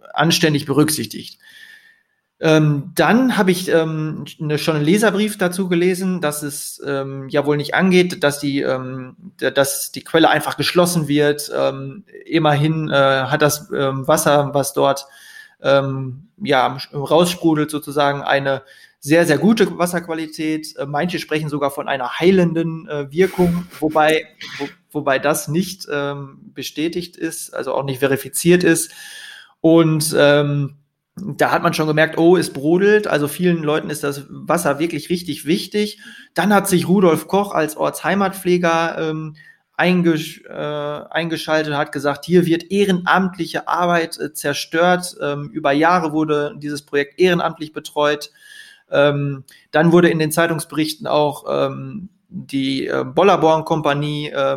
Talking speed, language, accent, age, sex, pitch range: 120 wpm, German, German, 30-49, male, 145-180 Hz